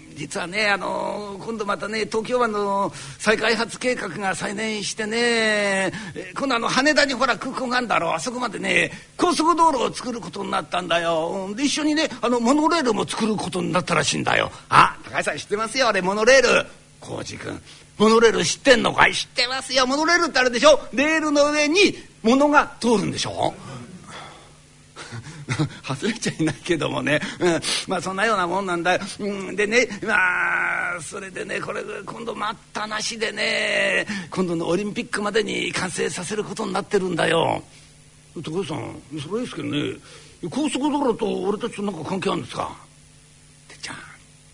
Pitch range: 180-260 Hz